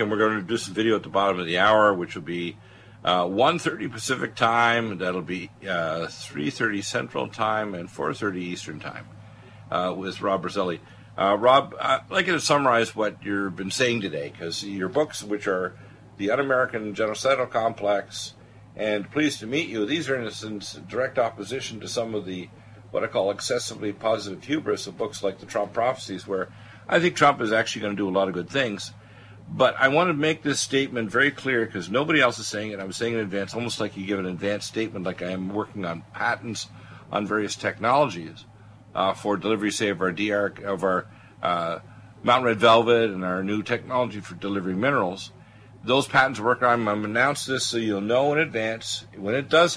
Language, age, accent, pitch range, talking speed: English, 50-69, American, 100-120 Hz, 200 wpm